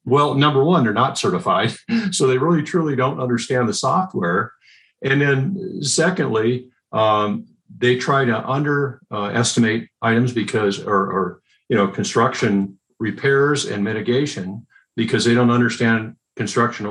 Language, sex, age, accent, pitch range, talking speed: English, male, 50-69, American, 105-140 Hz, 135 wpm